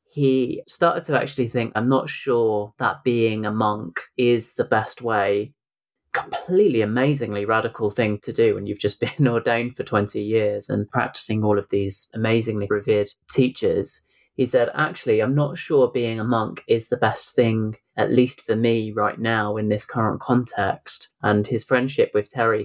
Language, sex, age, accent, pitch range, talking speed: English, male, 20-39, British, 110-135 Hz, 175 wpm